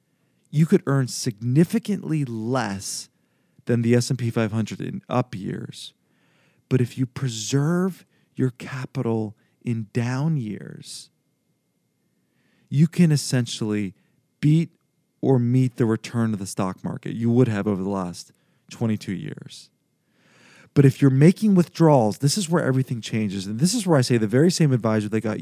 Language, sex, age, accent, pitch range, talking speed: English, male, 40-59, American, 110-155 Hz, 150 wpm